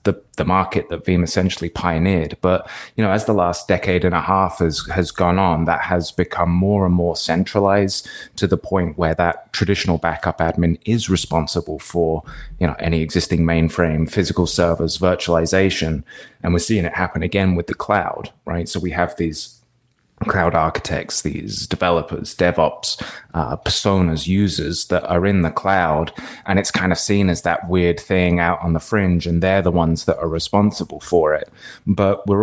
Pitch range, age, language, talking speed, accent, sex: 85-95 Hz, 20-39, English, 180 wpm, British, male